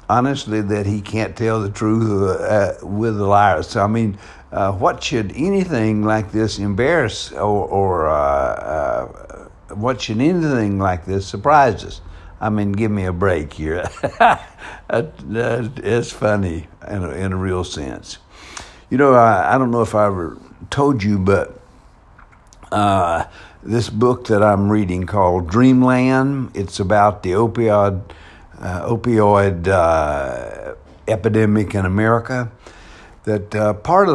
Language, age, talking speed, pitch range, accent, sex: English, 60-79, 140 wpm, 95-115 Hz, American, male